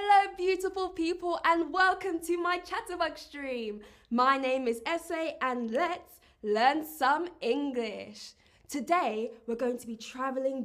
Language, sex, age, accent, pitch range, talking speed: English, female, 20-39, British, 250-345 Hz, 135 wpm